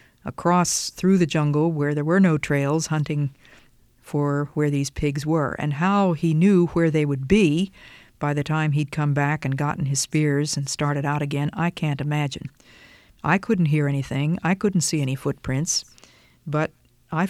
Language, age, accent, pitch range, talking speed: English, 50-69, American, 145-165 Hz, 175 wpm